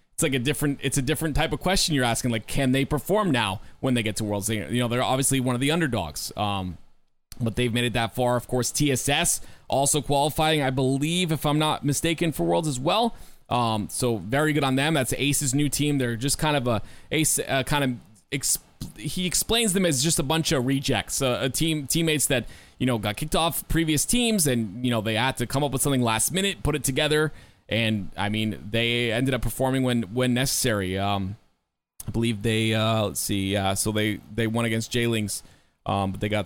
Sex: male